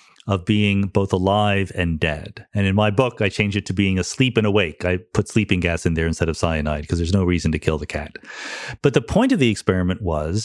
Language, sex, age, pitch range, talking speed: English, male, 40-59, 100-135 Hz, 240 wpm